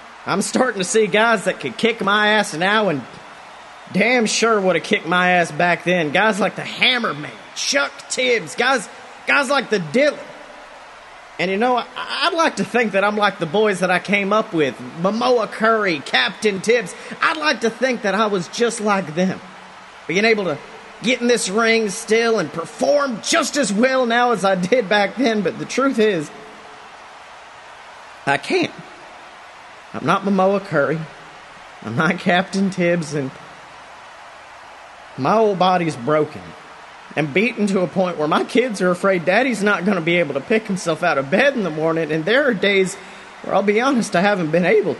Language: English